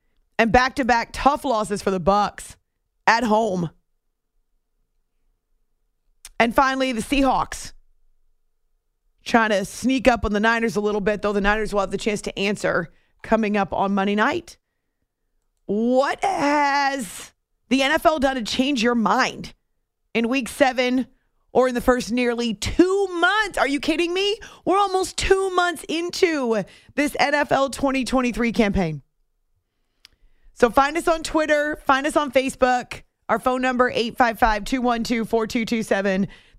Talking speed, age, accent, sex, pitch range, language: 135 wpm, 30-49, American, female, 215-280 Hz, English